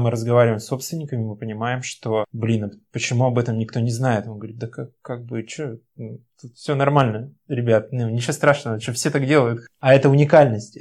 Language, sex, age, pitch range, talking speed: Russian, male, 20-39, 115-135 Hz, 195 wpm